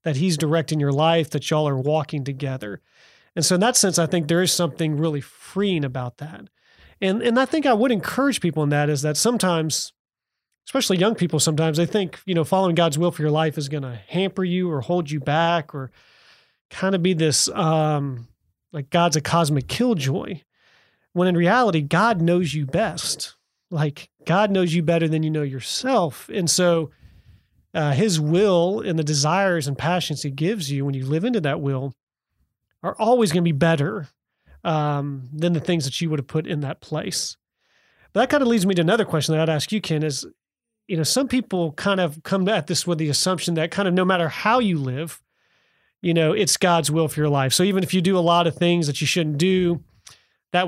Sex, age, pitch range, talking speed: male, 30-49, 150-185 Hz, 215 wpm